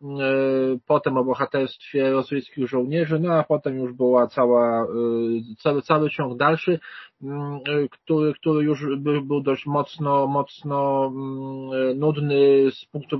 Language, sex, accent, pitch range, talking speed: Polish, male, native, 135-160 Hz, 115 wpm